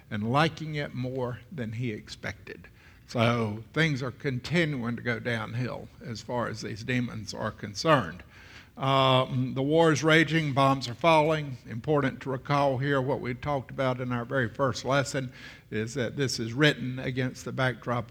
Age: 60-79